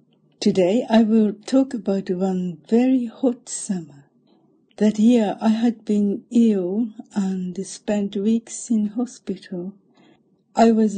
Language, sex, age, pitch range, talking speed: English, female, 60-79, 185-225 Hz, 120 wpm